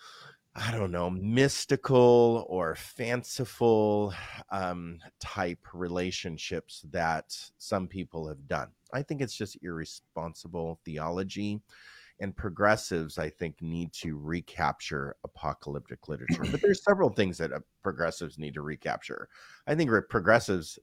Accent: American